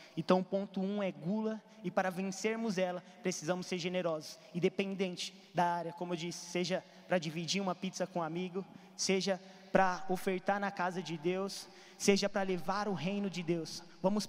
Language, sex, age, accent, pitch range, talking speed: Portuguese, male, 20-39, Brazilian, 180-210 Hz, 175 wpm